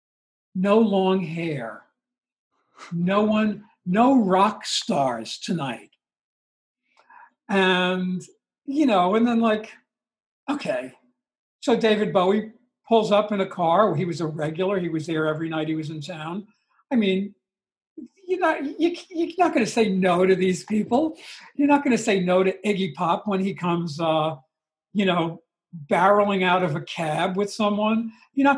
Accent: American